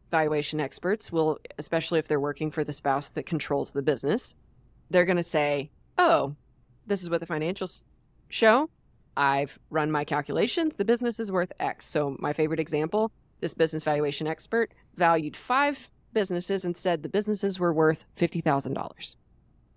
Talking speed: 160 wpm